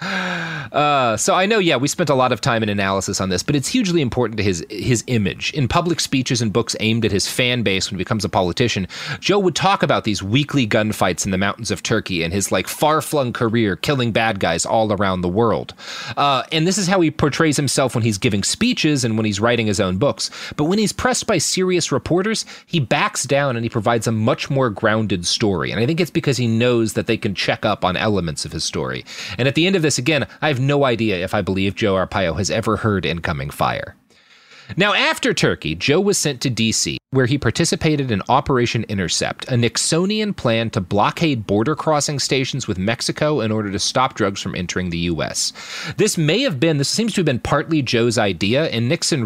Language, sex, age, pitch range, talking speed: English, male, 30-49, 105-150 Hz, 225 wpm